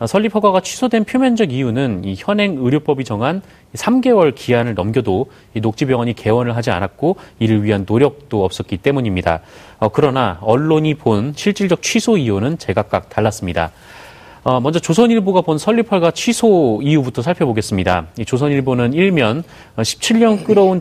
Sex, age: male, 30-49